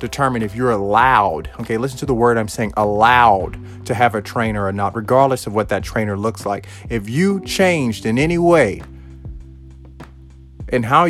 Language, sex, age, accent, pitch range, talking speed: English, male, 30-49, American, 100-130 Hz, 180 wpm